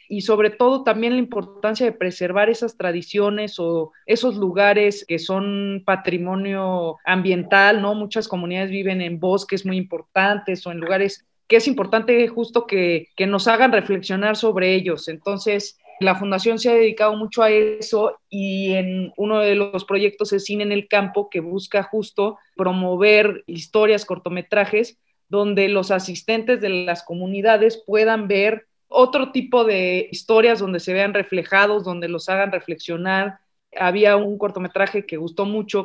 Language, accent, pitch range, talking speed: English, Mexican, 185-215 Hz, 150 wpm